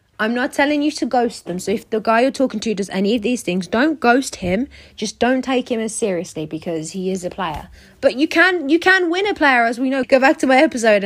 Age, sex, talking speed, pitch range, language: 20-39, female, 265 wpm, 200-275 Hz, English